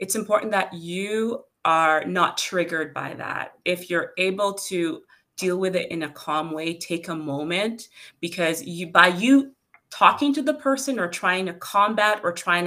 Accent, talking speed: American, 175 wpm